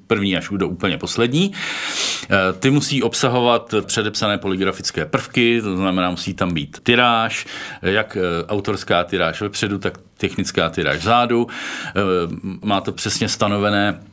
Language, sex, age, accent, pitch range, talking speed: Czech, male, 40-59, native, 95-115 Hz, 125 wpm